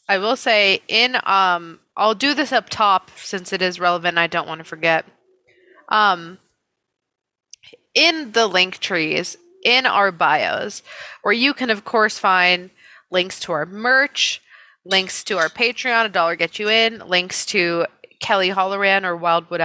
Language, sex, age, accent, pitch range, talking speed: English, female, 20-39, American, 180-235 Hz, 160 wpm